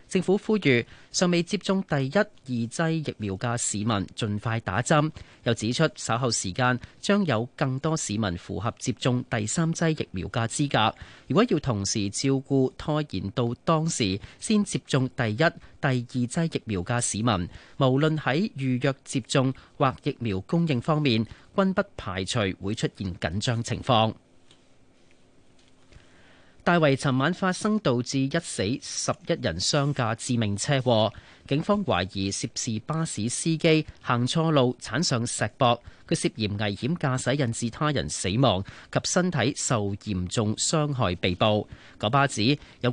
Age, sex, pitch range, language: 30-49, male, 110-150 Hz, Chinese